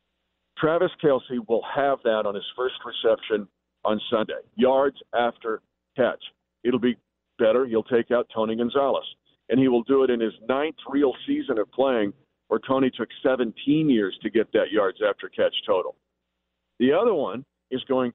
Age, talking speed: 50-69, 170 wpm